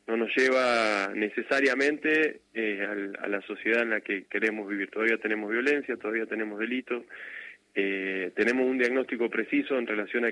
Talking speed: 150 wpm